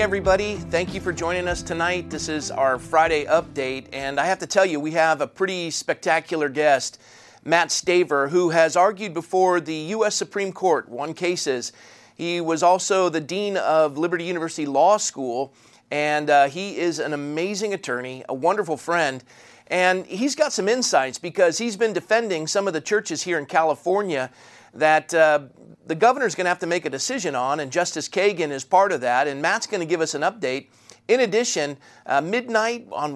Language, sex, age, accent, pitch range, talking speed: English, male, 40-59, American, 150-195 Hz, 190 wpm